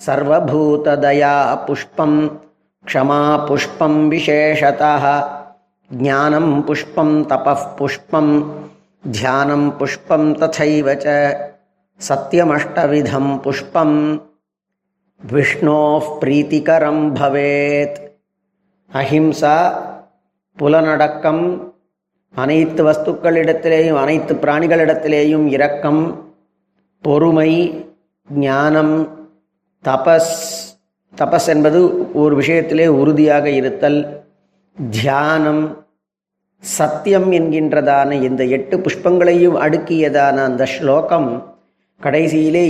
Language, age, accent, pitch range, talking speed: Tamil, 40-59, native, 145-165 Hz, 45 wpm